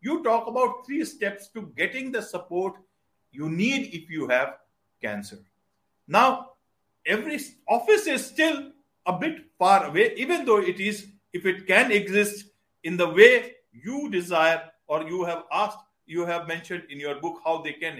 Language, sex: English, male